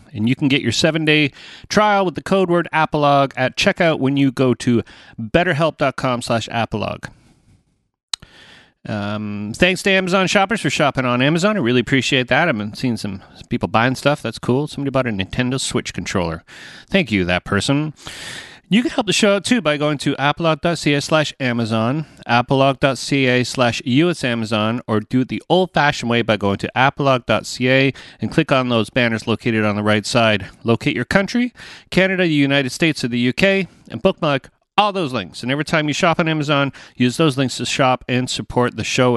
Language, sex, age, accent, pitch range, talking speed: English, male, 30-49, American, 115-160 Hz, 185 wpm